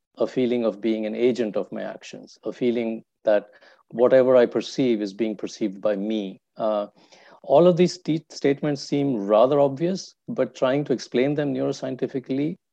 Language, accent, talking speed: English, Indian, 165 wpm